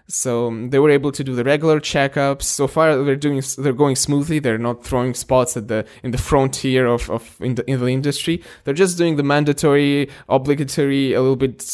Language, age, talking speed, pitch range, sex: English, 20-39, 215 wpm, 125-145 Hz, male